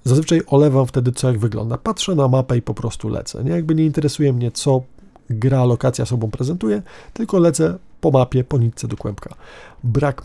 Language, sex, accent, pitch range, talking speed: Polish, male, native, 120-145 Hz, 185 wpm